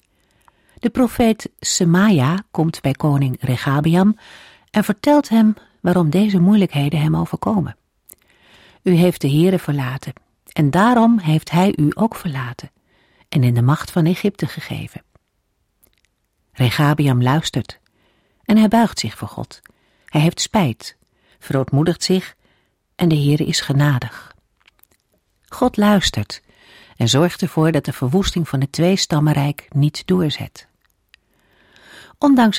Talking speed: 125 wpm